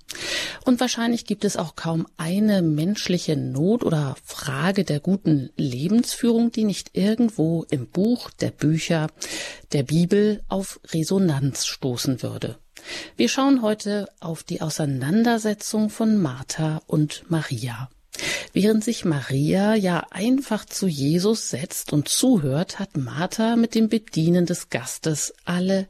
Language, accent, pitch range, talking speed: German, German, 150-210 Hz, 125 wpm